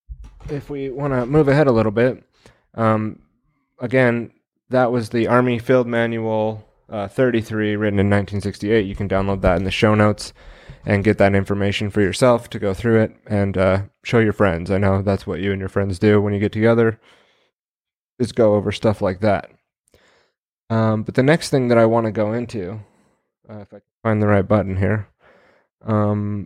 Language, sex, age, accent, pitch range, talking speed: English, male, 20-39, American, 100-115 Hz, 195 wpm